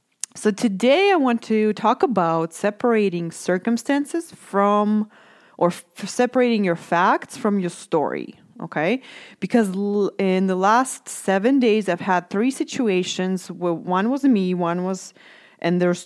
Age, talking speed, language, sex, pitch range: 20-39, 135 wpm, English, female, 175-235 Hz